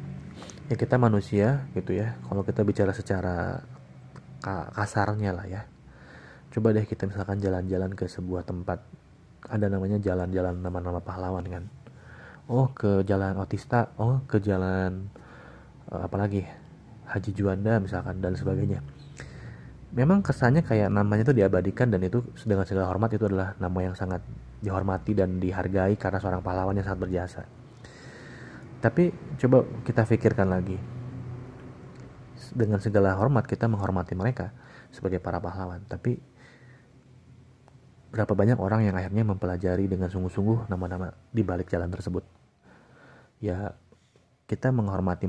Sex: male